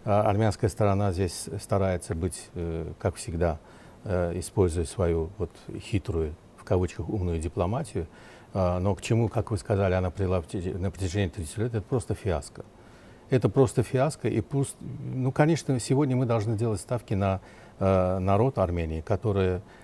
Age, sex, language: 60-79, male, Russian